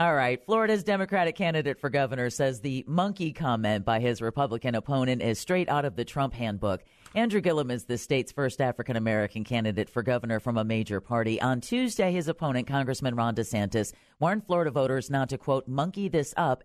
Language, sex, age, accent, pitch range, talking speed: English, female, 40-59, American, 115-165 Hz, 185 wpm